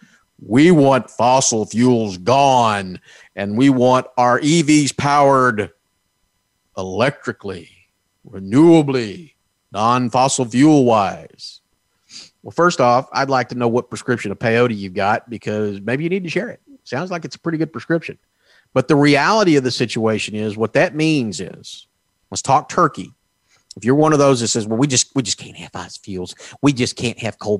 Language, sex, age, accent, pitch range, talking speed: English, male, 50-69, American, 105-140 Hz, 165 wpm